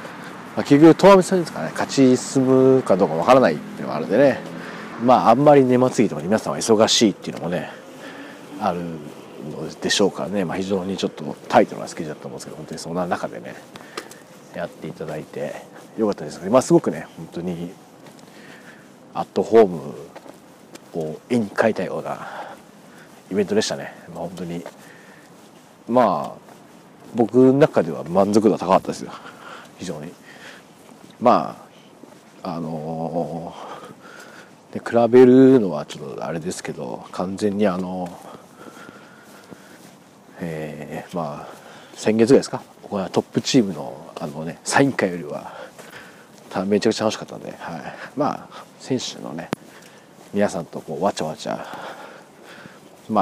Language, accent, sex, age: Japanese, native, male, 40-59